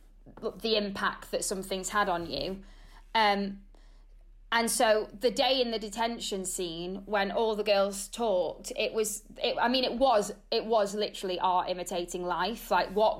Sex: female